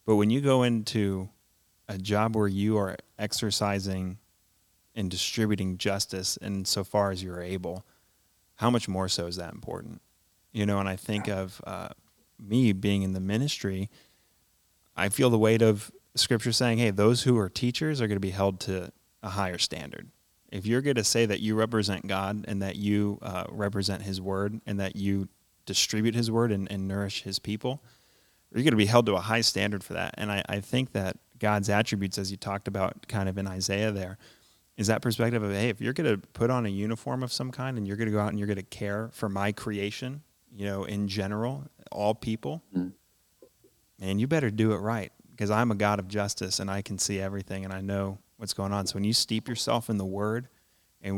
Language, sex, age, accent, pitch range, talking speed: English, male, 30-49, American, 95-110 Hz, 215 wpm